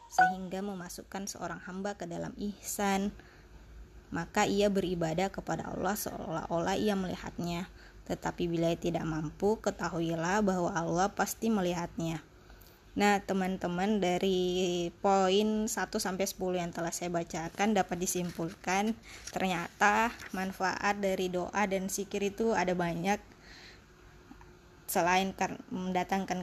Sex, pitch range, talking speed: female, 180-200 Hz, 105 wpm